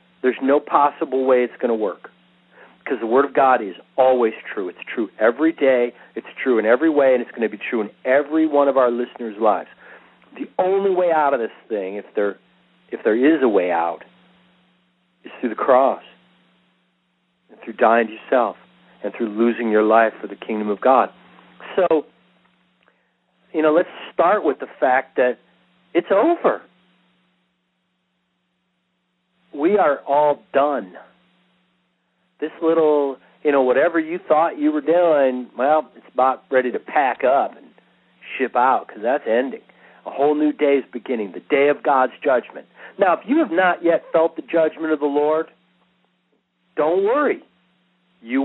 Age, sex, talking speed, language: 40-59, male, 170 wpm, English